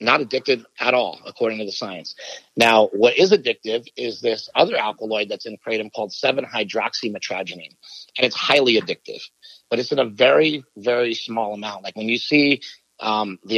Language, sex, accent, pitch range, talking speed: English, male, American, 110-140 Hz, 175 wpm